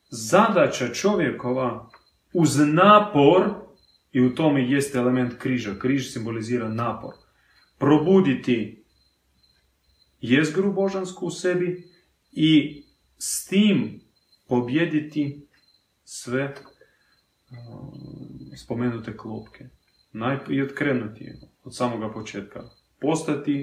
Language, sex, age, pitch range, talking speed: Croatian, male, 30-49, 110-145 Hz, 80 wpm